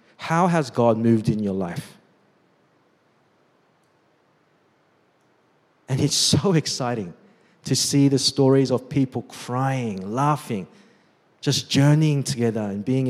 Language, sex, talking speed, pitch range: English, male, 110 wpm, 120-165 Hz